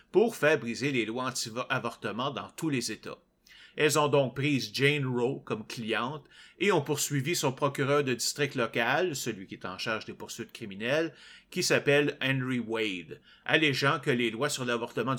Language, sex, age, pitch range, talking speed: French, male, 30-49, 115-145 Hz, 175 wpm